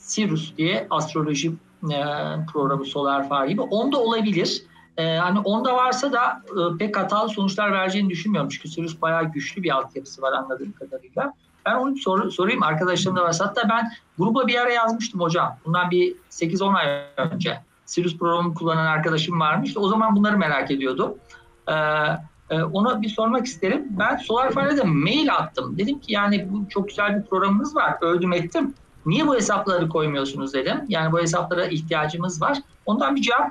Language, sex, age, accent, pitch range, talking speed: Turkish, male, 50-69, native, 160-220 Hz, 160 wpm